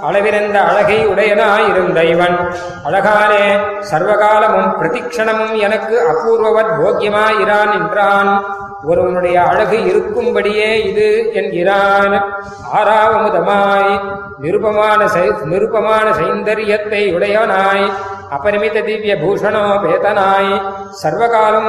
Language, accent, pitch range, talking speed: Tamil, native, 200-220 Hz, 65 wpm